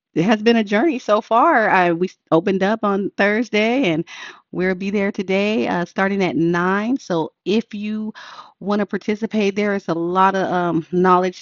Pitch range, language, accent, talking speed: 160-195 Hz, English, American, 180 wpm